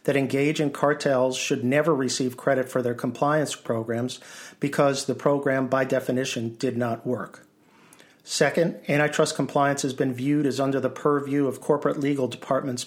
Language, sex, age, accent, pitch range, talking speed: English, male, 50-69, American, 125-145 Hz, 155 wpm